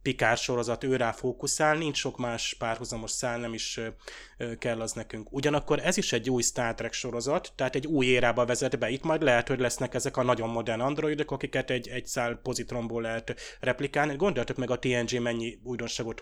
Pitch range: 120-135 Hz